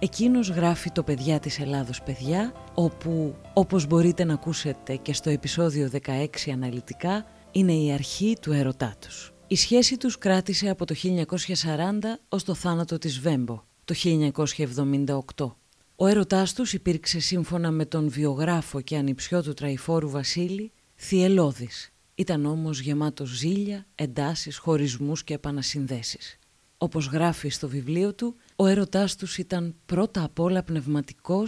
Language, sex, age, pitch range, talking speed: Greek, female, 30-49, 145-185 Hz, 135 wpm